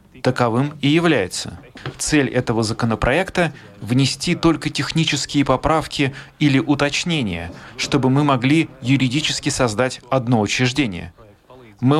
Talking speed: 100 wpm